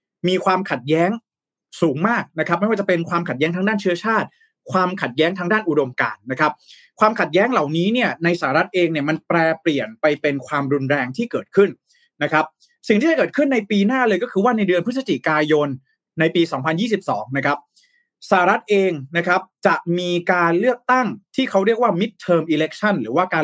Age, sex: 20-39, male